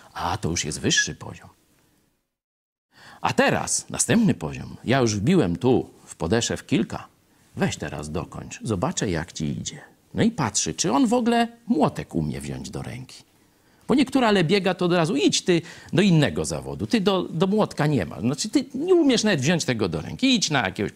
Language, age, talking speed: Polish, 50-69, 185 wpm